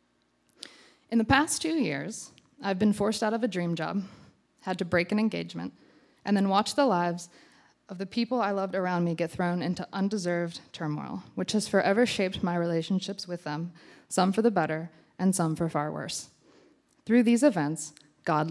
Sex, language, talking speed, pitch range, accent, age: female, English, 180 wpm, 160-200 Hz, American, 20-39